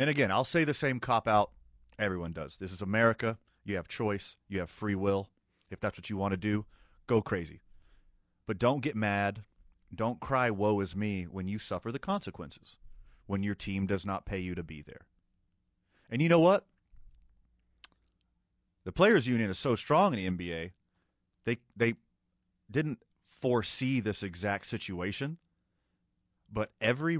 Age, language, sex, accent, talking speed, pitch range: 30-49, English, male, American, 165 wpm, 90-110 Hz